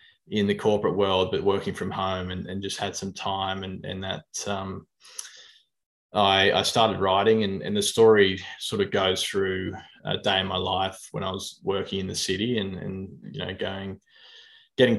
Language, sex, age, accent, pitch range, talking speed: English, male, 20-39, Australian, 95-105 Hz, 190 wpm